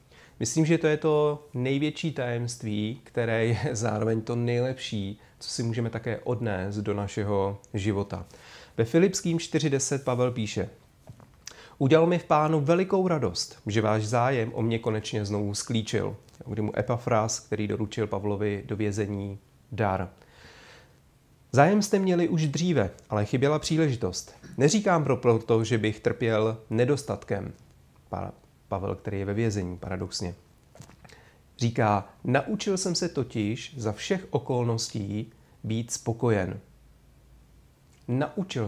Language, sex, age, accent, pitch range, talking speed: Czech, male, 30-49, native, 110-135 Hz, 125 wpm